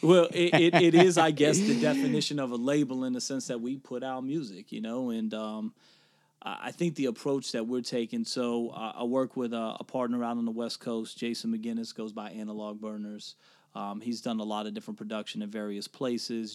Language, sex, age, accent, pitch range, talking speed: English, male, 30-49, American, 110-145 Hz, 215 wpm